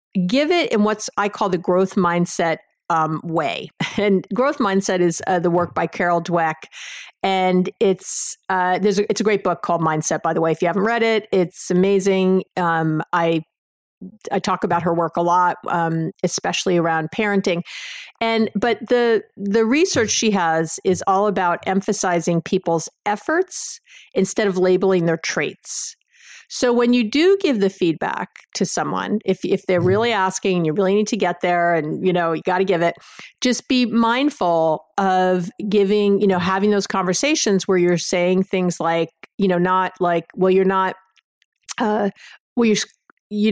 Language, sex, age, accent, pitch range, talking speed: English, female, 50-69, American, 175-210 Hz, 175 wpm